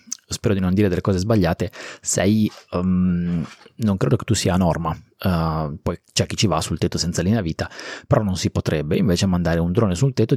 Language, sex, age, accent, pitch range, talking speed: Italian, male, 30-49, native, 90-120 Hz, 215 wpm